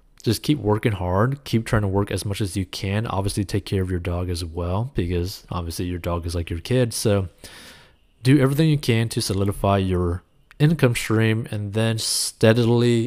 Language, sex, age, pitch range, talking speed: English, male, 20-39, 95-115 Hz, 195 wpm